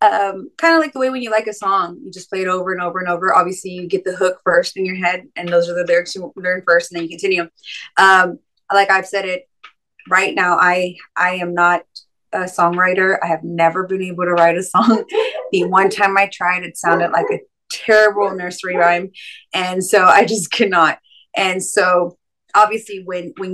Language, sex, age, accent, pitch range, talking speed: English, female, 20-39, American, 175-200 Hz, 215 wpm